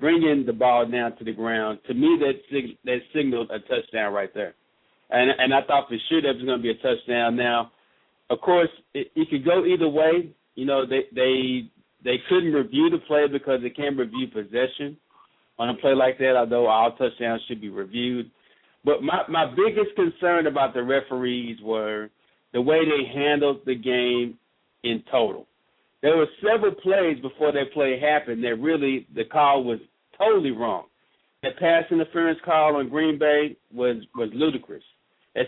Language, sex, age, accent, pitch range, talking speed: English, male, 50-69, American, 125-155 Hz, 185 wpm